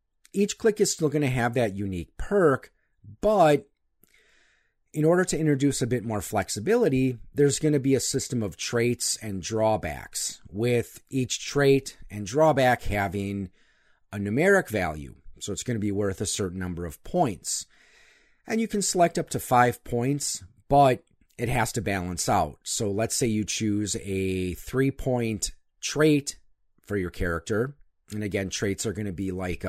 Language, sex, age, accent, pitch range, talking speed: English, male, 40-59, American, 100-130 Hz, 165 wpm